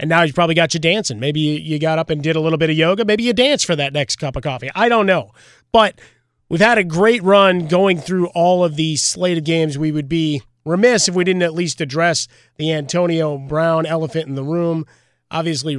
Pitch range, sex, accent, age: 145-175 Hz, male, American, 30-49